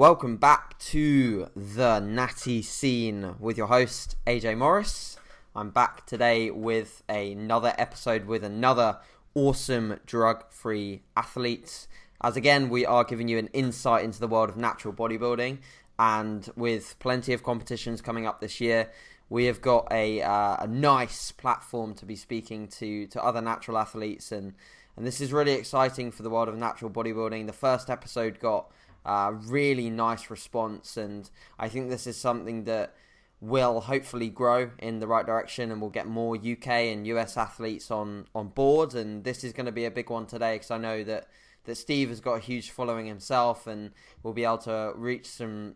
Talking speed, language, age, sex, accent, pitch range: 175 wpm, English, 10-29, male, British, 110-125 Hz